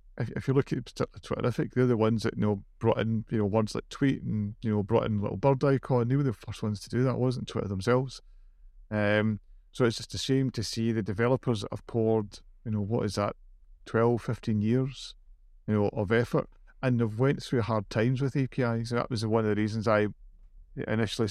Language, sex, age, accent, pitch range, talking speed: English, male, 40-59, British, 105-120 Hz, 225 wpm